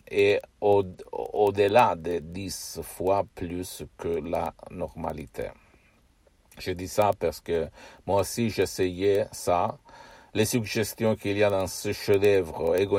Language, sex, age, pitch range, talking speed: Italian, male, 50-69, 90-105 Hz, 130 wpm